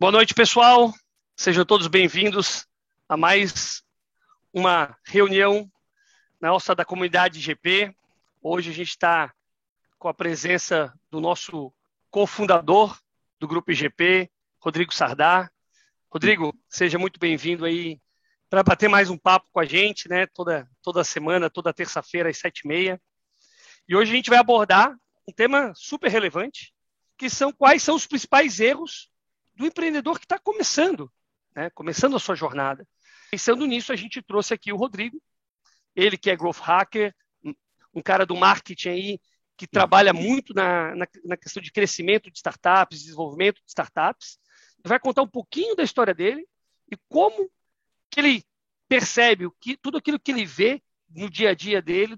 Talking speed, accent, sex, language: 155 wpm, Brazilian, male, Portuguese